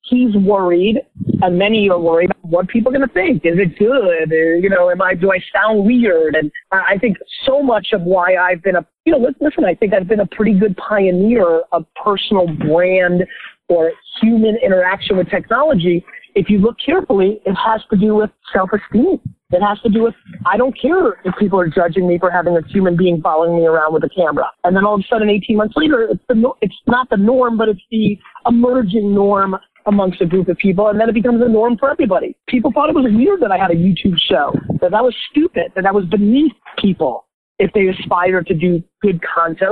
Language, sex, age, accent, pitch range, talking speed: English, male, 40-59, American, 185-245 Hz, 220 wpm